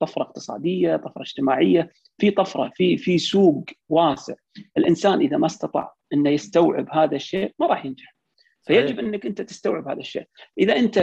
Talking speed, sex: 160 wpm, male